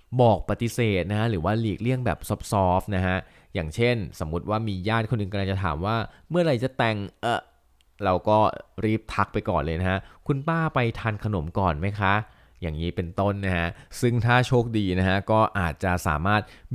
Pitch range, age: 90-110 Hz, 20-39